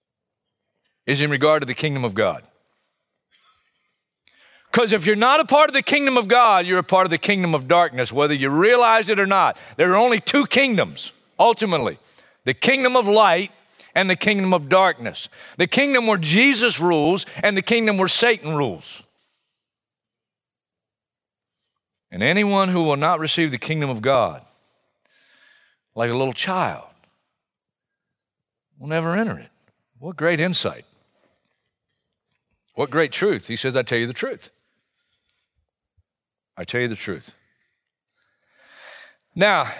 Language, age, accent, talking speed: English, 50-69, American, 145 wpm